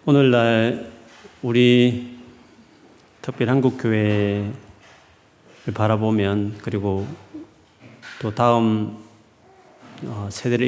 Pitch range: 100-120 Hz